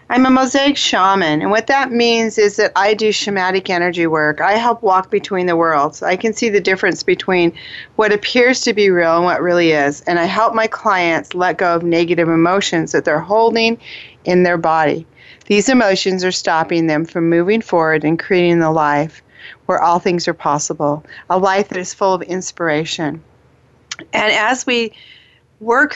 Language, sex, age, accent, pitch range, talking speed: English, female, 40-59, American, 170-215 Hz, 185 wpm